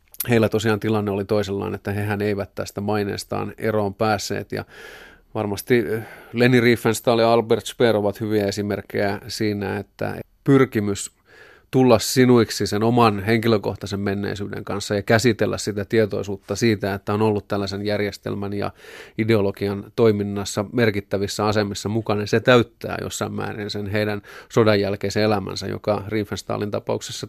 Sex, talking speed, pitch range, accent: male, 130 wpm, 100-115 Hz, native